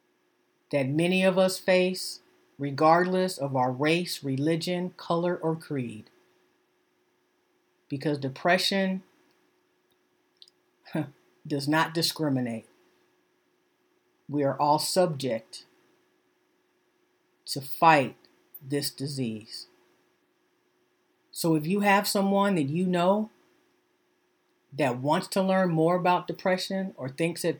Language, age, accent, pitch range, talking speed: English, 50-69, American, 145-185 Hz, 95 wpm